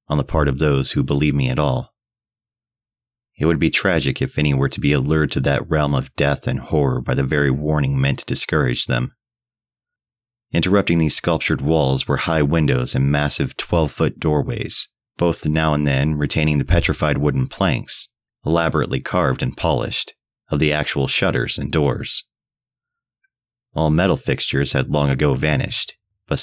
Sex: male